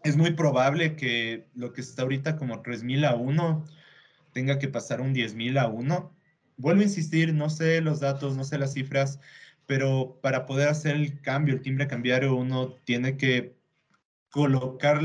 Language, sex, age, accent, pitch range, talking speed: Spanish, male, 30-49, Mexican, 120-145 Hz, 170 wpm